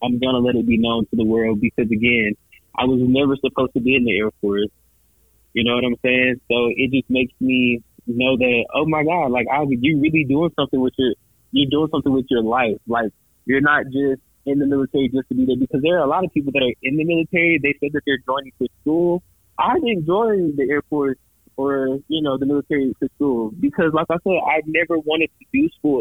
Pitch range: 125-155 Hz